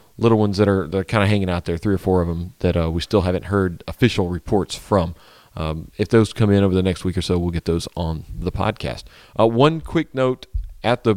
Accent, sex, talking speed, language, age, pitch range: American, male, 245 wpm, English, 40-59, 85-105 Hz